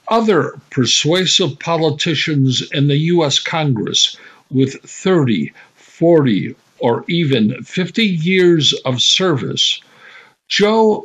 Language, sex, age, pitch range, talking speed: English, male, 60-79, 150-190 Hz, 90 wpm